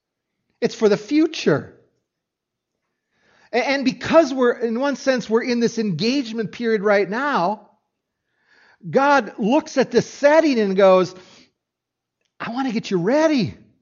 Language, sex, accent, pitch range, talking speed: English, male, American, 170-240 Hz, 130 wpm